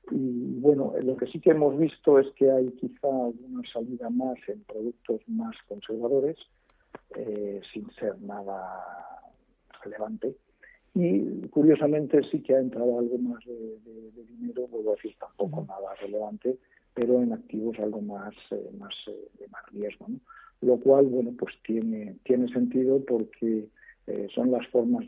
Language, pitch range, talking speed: Spanish, 105-130 Hz, 155 wpm